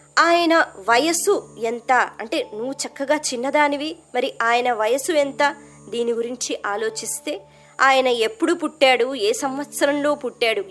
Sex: male